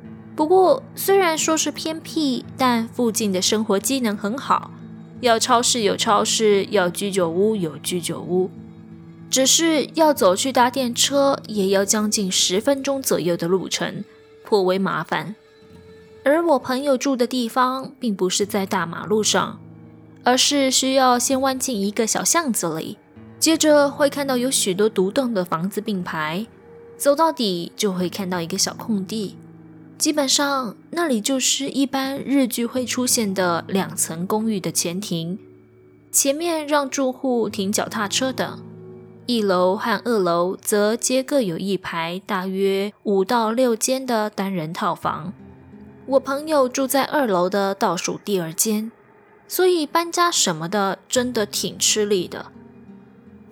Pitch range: 190-270 Hz